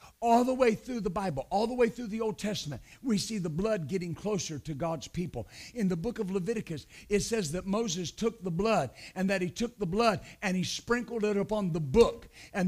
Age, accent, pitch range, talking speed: 50-69, American, 190-245 Hz, 225 wpm